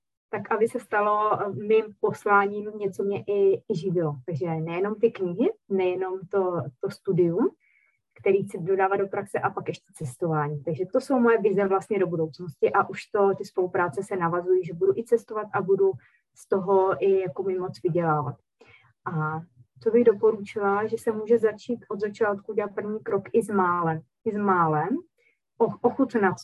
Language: Czech